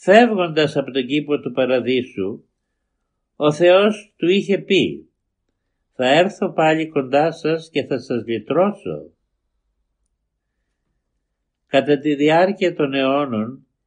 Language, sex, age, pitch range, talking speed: Greek, male, 60-79, 120-155 Hz, 110 wpm